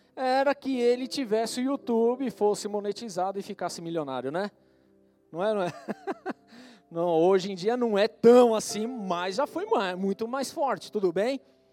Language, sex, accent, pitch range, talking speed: Portuguese, male, Brazilian, 195-270 Hz, 160 wpm